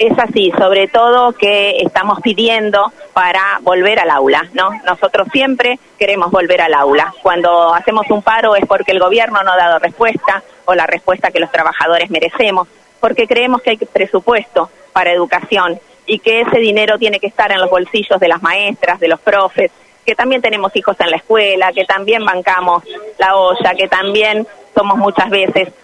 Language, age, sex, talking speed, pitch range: Spanish, 30-49, female, 180 wpm, 185-230 Hz